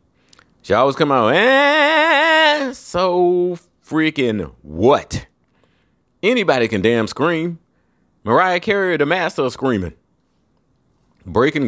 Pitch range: 100-155 Hz